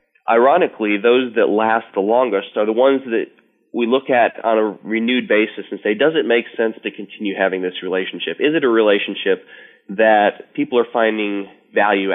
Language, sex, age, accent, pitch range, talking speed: English, male, 20-39, American, 100-120 Hz, 185 wpm